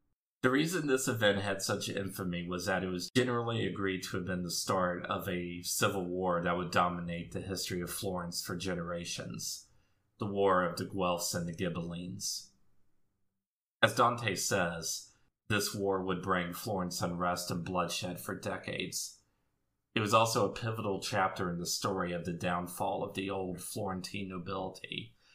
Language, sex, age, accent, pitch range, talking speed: English, male, 40-59, American, 90-100 Hz, 165 wpm